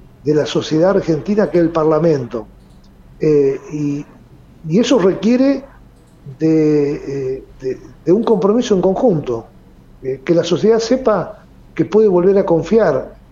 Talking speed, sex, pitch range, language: 130 wpm, male, 135-200 Hz, Spanish